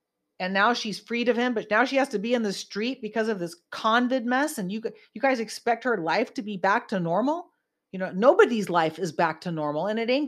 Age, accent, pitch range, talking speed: 40-59, American, 195-255 Hz, 250 wpm